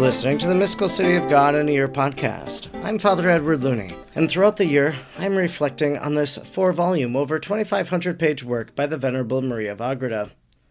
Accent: American